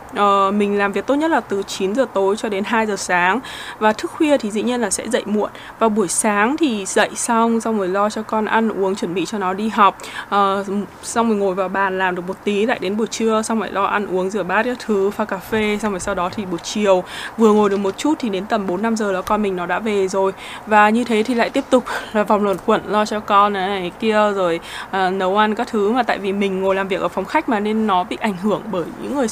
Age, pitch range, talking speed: 20-39, 195-235 Hz, 285 wpm